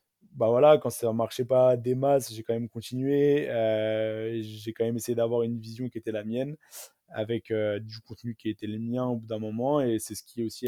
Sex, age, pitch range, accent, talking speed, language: male, 20-39, 110-125 Hz, French, 235 wpm, French